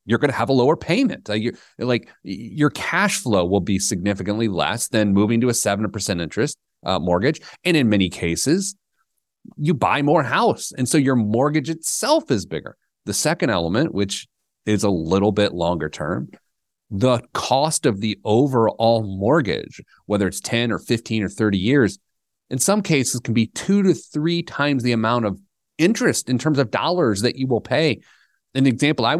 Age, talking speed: 30-49, 180 wpm